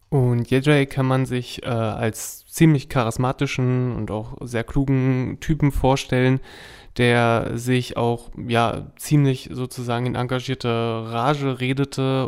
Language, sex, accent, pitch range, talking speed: German, male, German, 115-130 Hz, 120 wpm